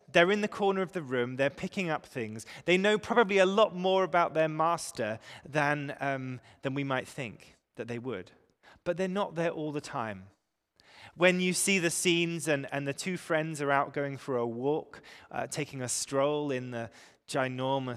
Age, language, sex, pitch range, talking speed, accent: 20-39, English, male, 120-160 Hz, 195 wpm, British